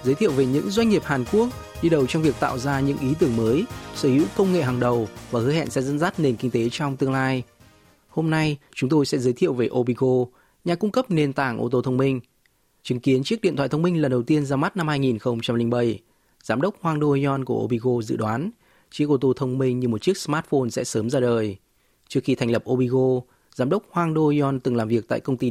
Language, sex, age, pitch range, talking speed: Vietnamese, male, 20-39, 120-150 Hz, 245 wpm